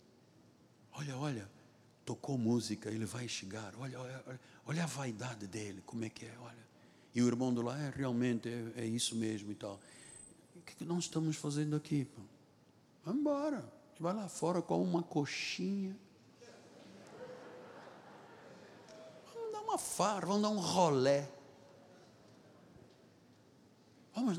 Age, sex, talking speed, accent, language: 60-79, male, 135 wpm, Brazilian, Portuguese